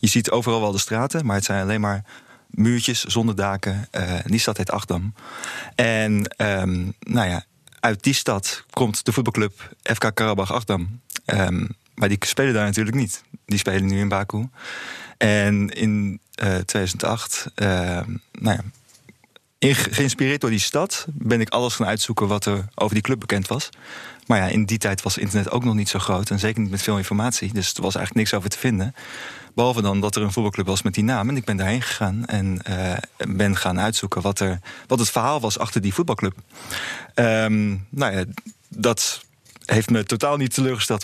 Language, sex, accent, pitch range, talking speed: Dutch, male, Dutch, 100-120 Hz, 185 wpm